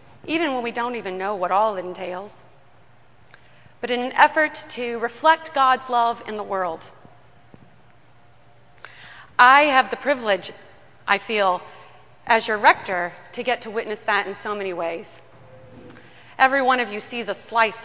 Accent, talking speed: American, 155 wpm